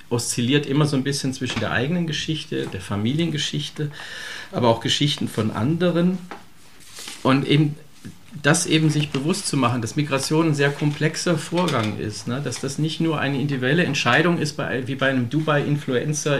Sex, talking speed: male, 165 wpm